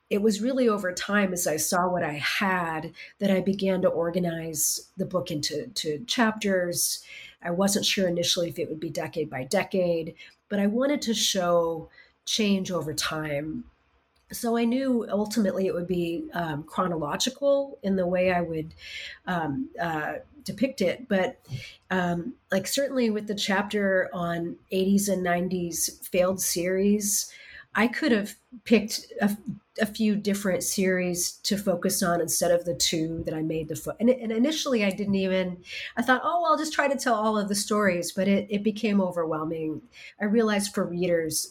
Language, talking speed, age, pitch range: English, 170 wpm, 40-59, 170-210 Hz